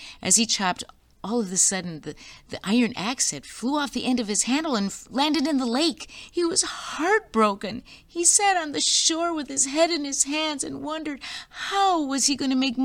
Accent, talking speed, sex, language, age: American, 220 wpm, female, English, 50-69